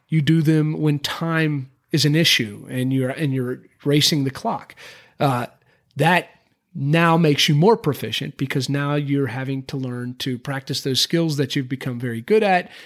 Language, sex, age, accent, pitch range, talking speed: English, male, 30-49, American, 135-175 Hz, 175 wpm